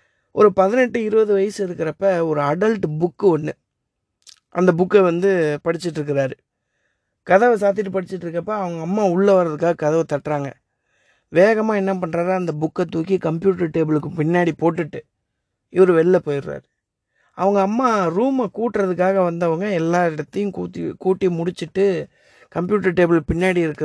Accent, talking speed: native, 120 wpm